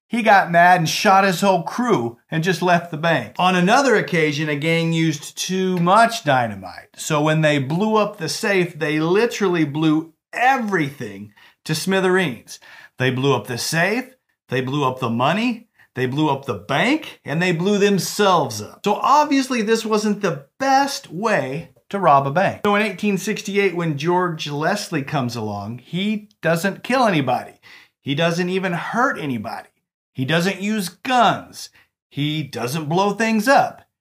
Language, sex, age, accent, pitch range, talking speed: English, male, 40-59, American, 145-200 Hz, 160 wpm